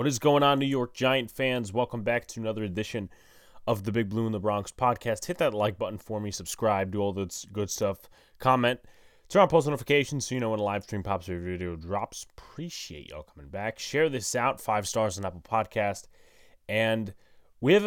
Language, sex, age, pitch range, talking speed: English, male, 20-39, 90-115 Hz, 220 wpm